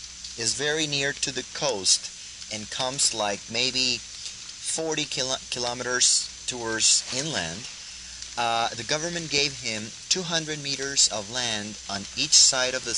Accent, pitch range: American, 100-130 Hz